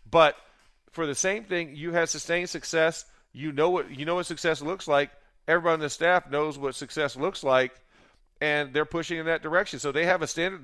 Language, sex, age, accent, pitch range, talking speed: English, male, 40-59, American, 140-180 Hz, 215 wpm